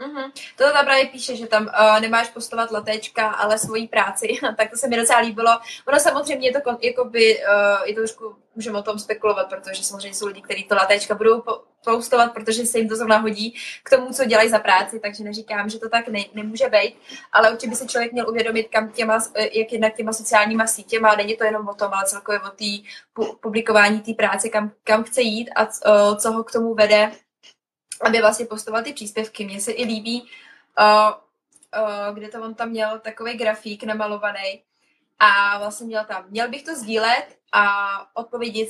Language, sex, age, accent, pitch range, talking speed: Czech, female, 20-39, native, 210-235 Hz, 200 wpm